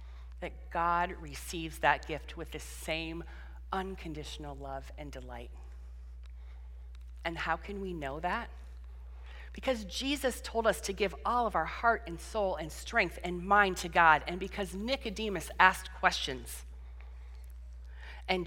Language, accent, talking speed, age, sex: English, American, 135 wpm, 40-59, female